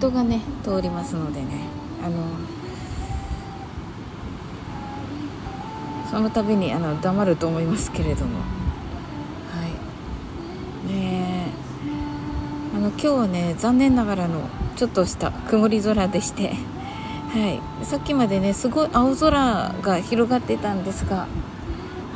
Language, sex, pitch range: Japanese, female, 175-220 Hz